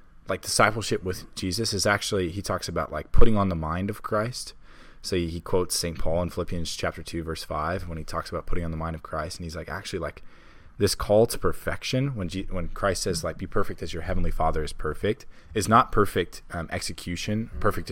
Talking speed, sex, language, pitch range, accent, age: 220 wpm, male, English, 85-100 Hz, American, 20-39